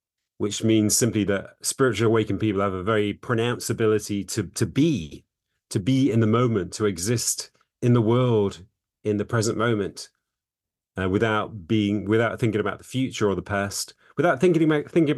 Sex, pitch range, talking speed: male, 105-120 Hz, 175 wpm